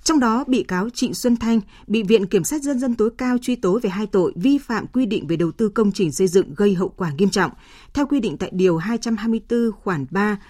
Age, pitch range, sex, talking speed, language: 20-39, 190-230 Hz, female, 250 wpm, Vietnamese